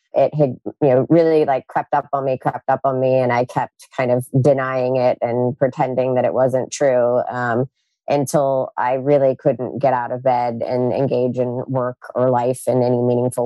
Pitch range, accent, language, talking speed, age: 125-145 Hz, American, English, 200 wpm, 30-49